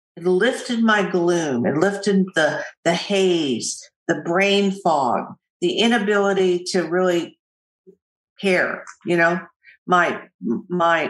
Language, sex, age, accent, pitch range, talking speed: English, female, 50-69, American, 175-220 Hz, 115 wpm